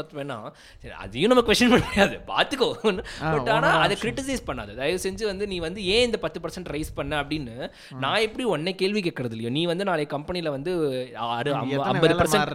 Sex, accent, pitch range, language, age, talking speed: male, native, 125-190 Hz, Tamil, 20-39, 165 wpm